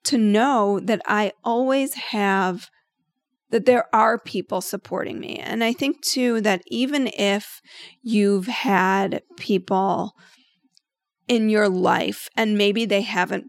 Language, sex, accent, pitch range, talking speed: English, female, American, 195-240 Hz, 130 wpm